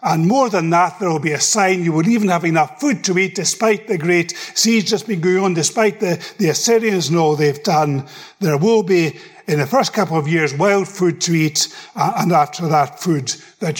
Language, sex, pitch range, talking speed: English, male, 150-195 Hz, 215 wpm